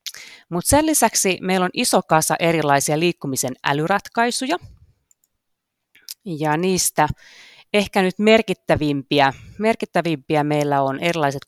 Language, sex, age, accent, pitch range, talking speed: Finnish, female, 30-49, native, 145-170 Hz, 100 wpm